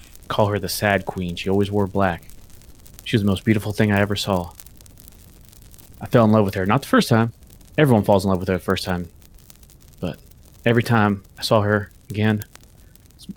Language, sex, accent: English, male, American